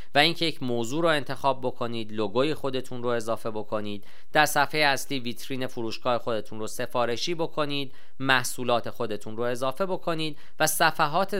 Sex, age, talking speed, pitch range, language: male, 40-59, 145 wpm, 120-155 Hz, Persian